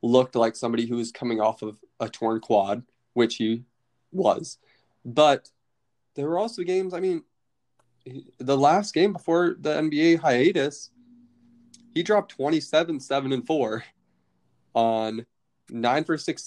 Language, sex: English, male